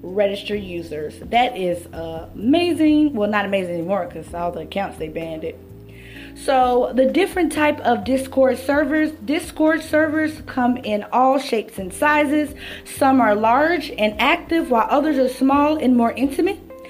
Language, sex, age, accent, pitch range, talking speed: English, female, 20-39, American, 205-290 Hz, 155 wpm